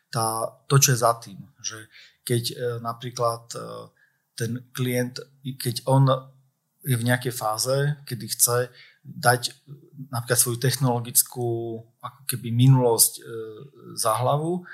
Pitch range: 120-140 Hz